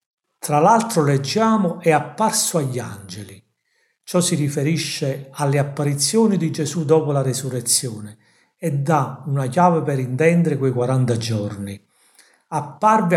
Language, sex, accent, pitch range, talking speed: Italian, male, native, 125-170 Hz, 125 wpm